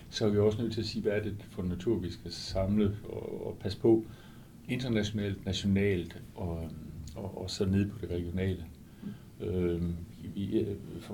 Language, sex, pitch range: Danish, male, 95-110 Hz